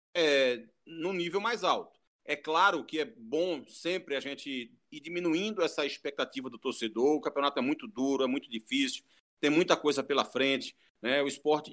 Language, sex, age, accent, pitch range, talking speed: Portuguese, male, 40-59, Brazilian, 150-230 Hz, 175 wpm